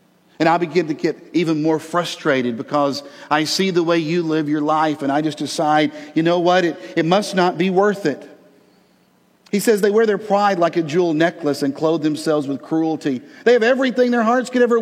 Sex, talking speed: male, 215 wpm